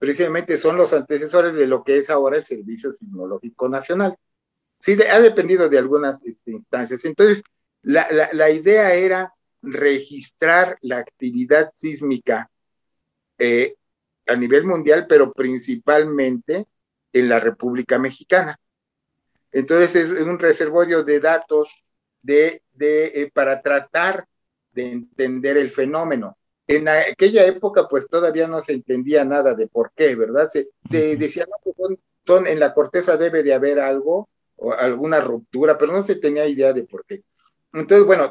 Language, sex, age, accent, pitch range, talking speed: Spanish, male, 50-69, Mexican, 135-185 Hz, 145 wpm